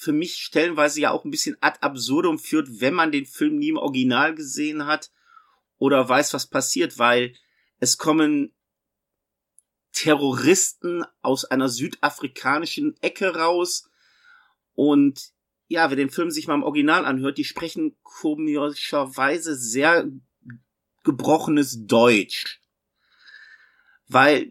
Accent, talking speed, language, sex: German, 120 wpm, German, male